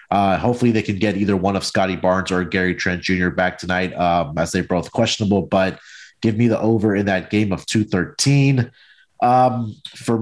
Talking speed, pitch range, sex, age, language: 195 wpm, 90-115 Hz, male, 30-49, English